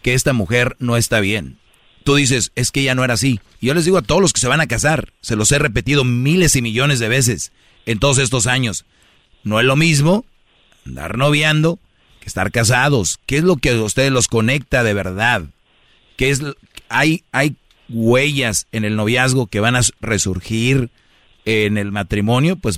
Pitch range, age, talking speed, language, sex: 110-145 Hz, 40-59, 195 wpm, Spanish, male